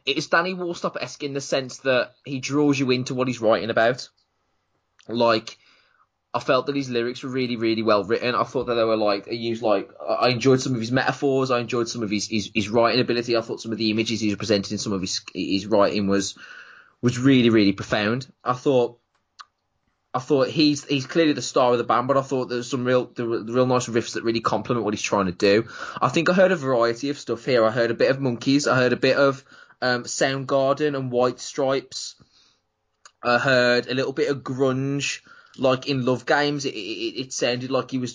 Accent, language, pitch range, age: British, English, 115-135 Hz, 20-39